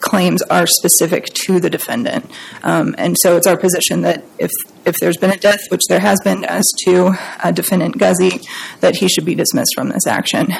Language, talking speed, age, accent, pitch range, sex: English, 205 wpm, 20-39, American, 190-210 Hz, female